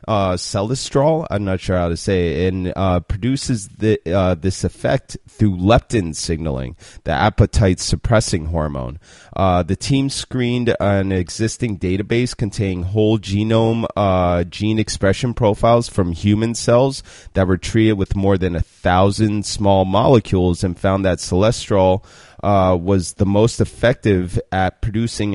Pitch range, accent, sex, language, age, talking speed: 90-115 Hz, American, male, English, 30-49, 140 wpm